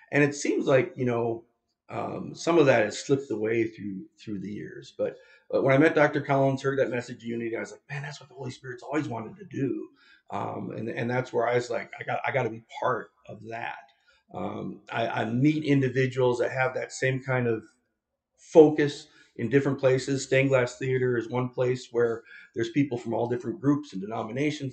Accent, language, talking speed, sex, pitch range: American, English, 215 wpm, male, 115-140 Hz